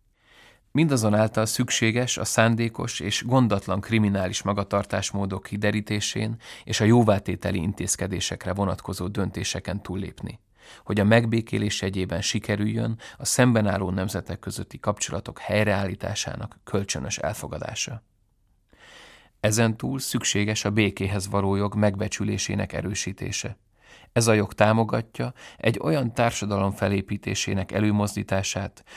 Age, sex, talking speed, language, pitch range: 30-49, male, 95 wpm, Hungarian, 100-110 Hz